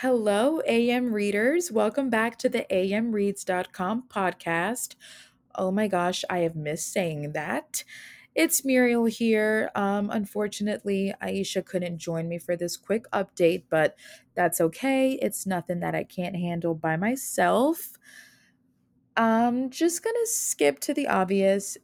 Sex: female